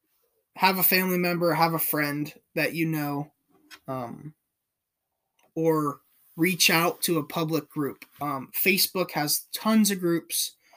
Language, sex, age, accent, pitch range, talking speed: English, male, 20-39, American, 145-175 Hz, 135 wpm